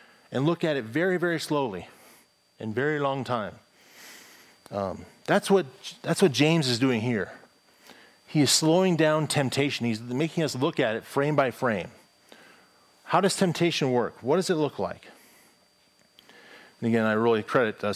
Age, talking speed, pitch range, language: 40-59, 165 wpm, 120-155 Hz, English